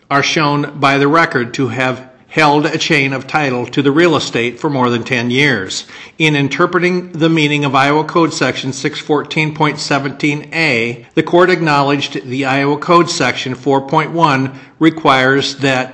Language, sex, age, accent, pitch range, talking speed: English, male, 50-69, American, 135-155 Hz, 150 wpm